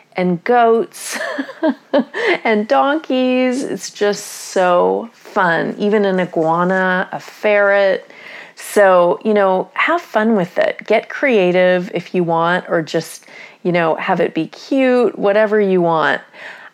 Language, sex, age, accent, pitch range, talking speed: English, female, 30-49, American, 165-215 Hz, 130 wpm